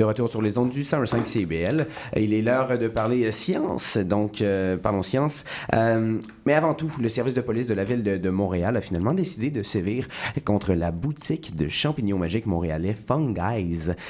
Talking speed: 190 wpm